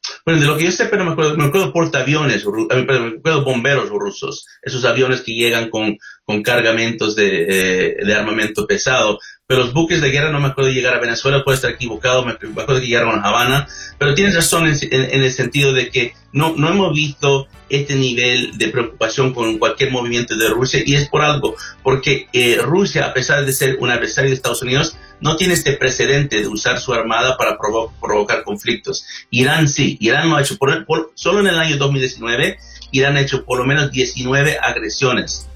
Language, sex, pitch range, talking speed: Spanish, male, 120-145 Hz, 215 wpm